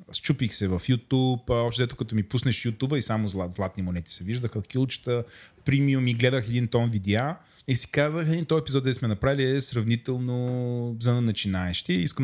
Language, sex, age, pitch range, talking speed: Bulgarian, male, 20-39, 100-125 Hz, 180 wpm